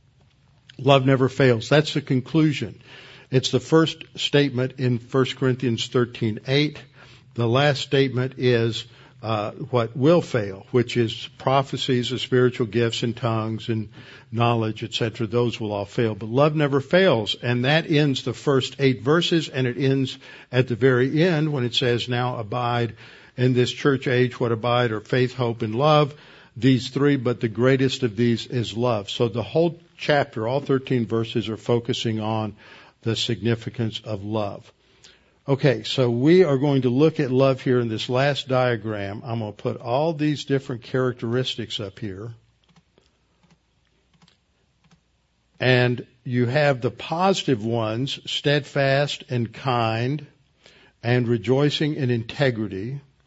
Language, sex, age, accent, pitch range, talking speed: English, male, 60-79, American, 120-140 Hz, 150 wpm